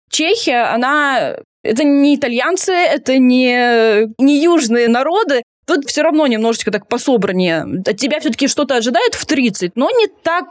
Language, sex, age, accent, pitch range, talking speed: Russian, female, 20-39, native, 220-295 Hz, 150 wpm